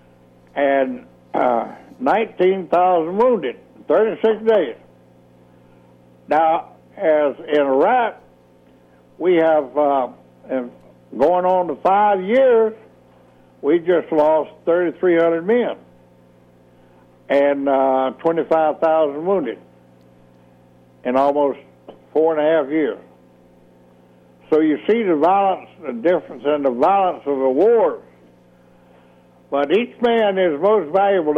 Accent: American